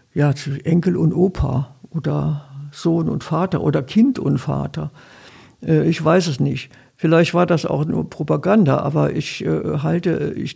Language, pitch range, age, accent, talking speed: German, 140-175 Hz, 60-79, German, 140 wpm